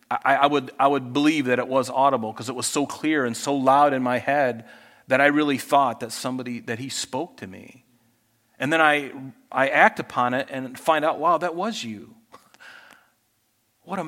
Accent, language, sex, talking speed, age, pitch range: American, English, male, 200 wpm, 40-59, 130-165 Hz